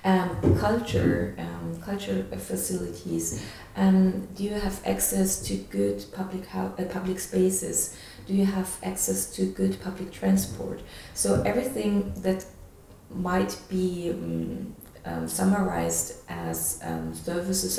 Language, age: Ukrainian, 30-49